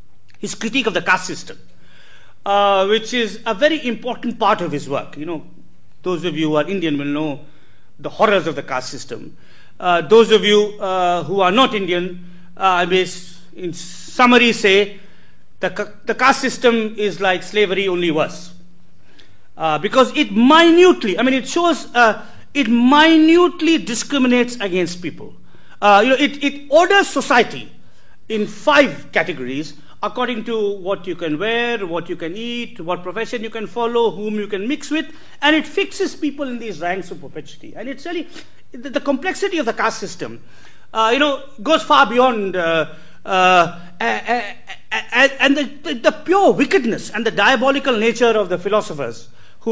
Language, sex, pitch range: English, male, 175-260 Hz